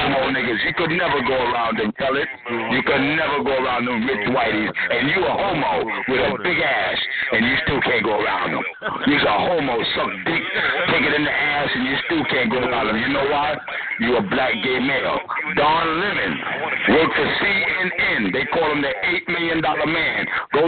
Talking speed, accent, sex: 205 wpm, American, male